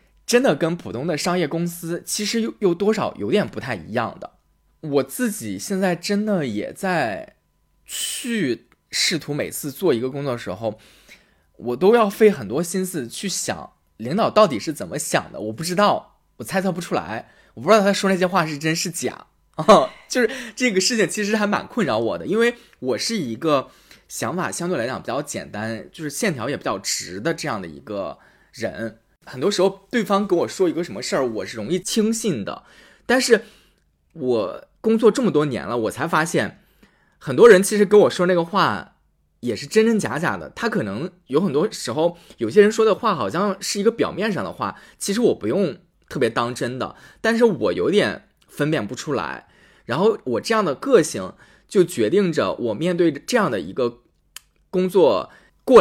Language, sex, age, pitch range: Chinese, male, 20-39, 165-220 Hz